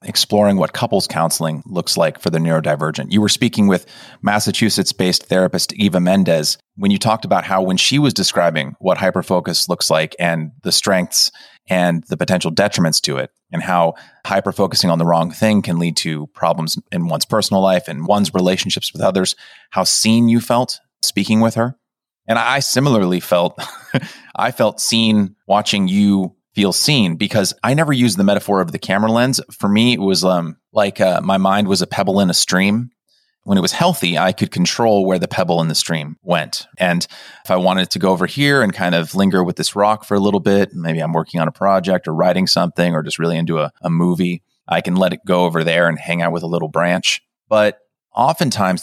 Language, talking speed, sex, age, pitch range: English, 205 wpm, male, 30-49, 85-105 Hz